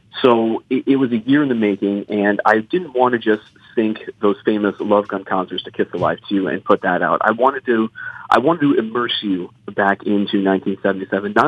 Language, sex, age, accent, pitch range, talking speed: English, male, 40-59, American, 100-115 Hz, 210 wpm